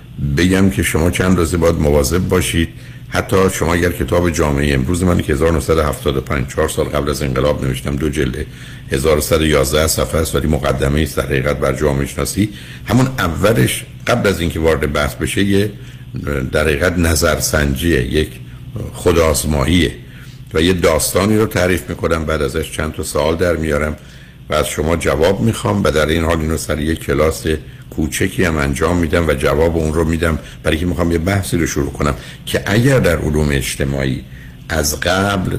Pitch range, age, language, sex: 75-90 Hz, 60-79, Persian, male